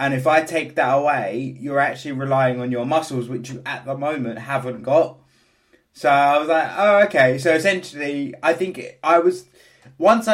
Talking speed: 185 wpm